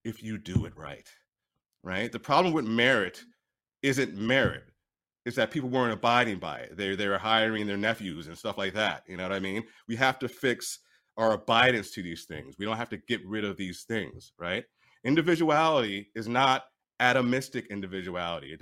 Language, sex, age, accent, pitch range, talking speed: English, male, 30-49, American, 100-125 Hz, 185 wpm